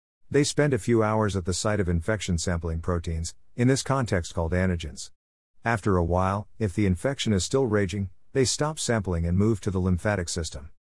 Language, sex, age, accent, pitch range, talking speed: English, male, 50-69, American, 85-115 Hz, 190 wpm